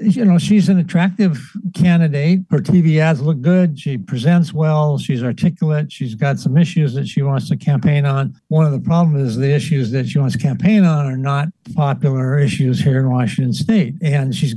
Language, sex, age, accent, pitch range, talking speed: English, male, 60-79, American, 140-175 Hz, 200 wpm